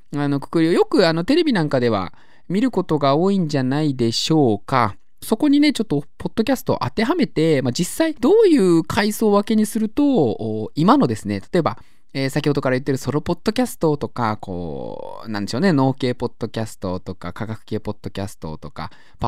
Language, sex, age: Japanese, male, 20-39